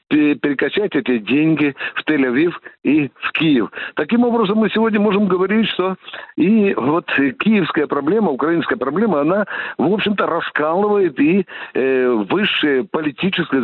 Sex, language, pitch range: male, Russian, 140-215 Hz